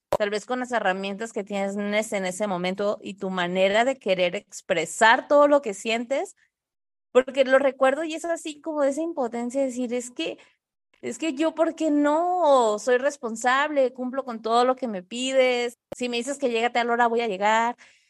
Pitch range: 205-265 Hz